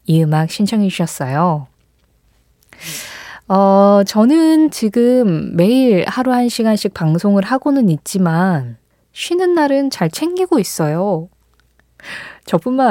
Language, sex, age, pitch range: Korean, female, 20-39, 165-240 Hz